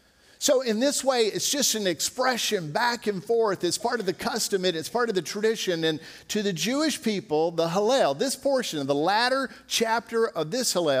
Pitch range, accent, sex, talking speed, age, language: 135-205 Hz, American, male, 205 wpm, 50-69, English